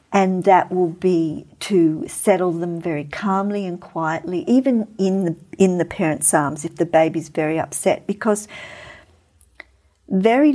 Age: 50-69